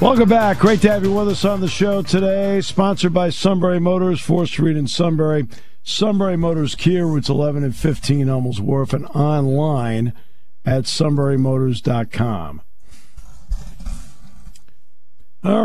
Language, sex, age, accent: English, male, 50-69, American